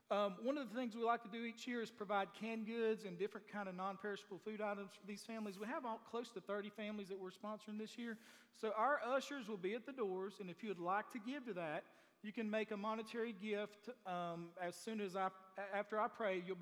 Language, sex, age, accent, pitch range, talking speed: English, male, 40-59, American, 180-215 Hz, 235 wpm